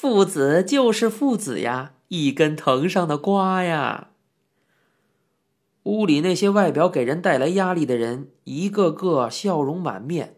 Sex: male